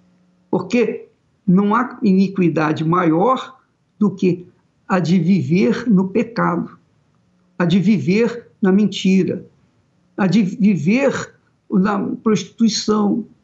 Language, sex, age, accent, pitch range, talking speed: Portuguese, male, 60-79, Brazilian, 180-250 Hz, 100 wpm